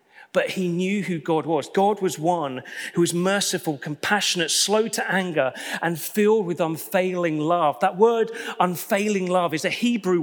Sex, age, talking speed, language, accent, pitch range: male, 40-59, 165 wpm, English, British, 170-220 Hz